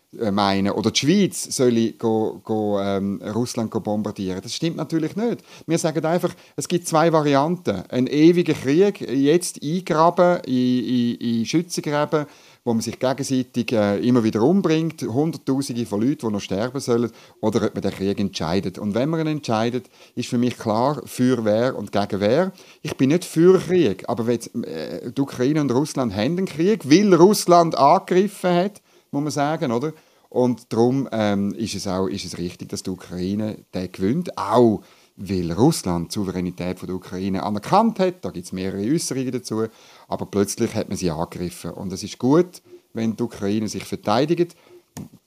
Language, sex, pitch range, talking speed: German, male, 105-160 Hz, 180 wpm